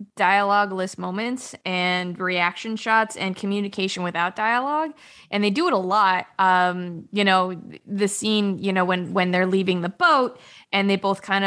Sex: female